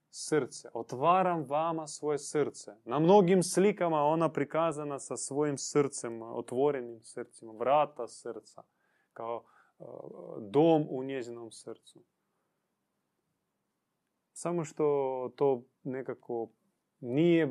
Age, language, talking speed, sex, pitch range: 20-39, Croatian, 95 wpm, male, 130-170 Hz